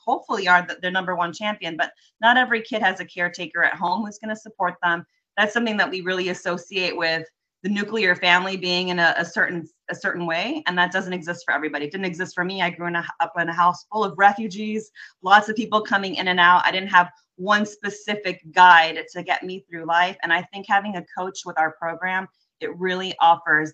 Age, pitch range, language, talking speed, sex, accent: 30-49, 170-205 Hz, English, 230 wpm, female, American